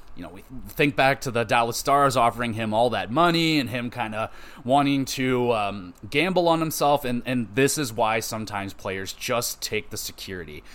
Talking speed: 195 wpm